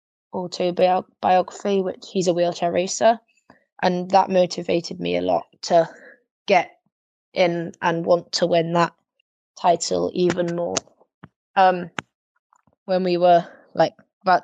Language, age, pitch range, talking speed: English, 20-39, 170-180 Hz, 120 wpm